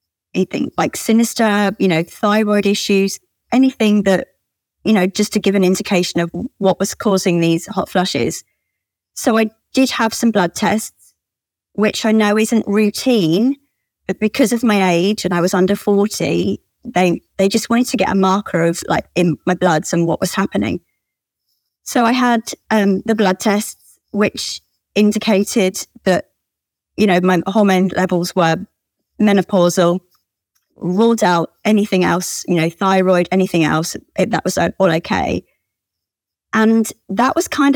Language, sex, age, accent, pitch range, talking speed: English, female, 30-49, British, 175-220 Hz, 155 wpm